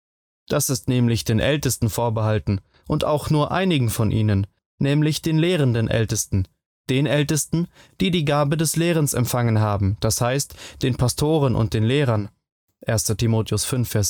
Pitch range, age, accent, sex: 110-145 Hz, 20-39, German, male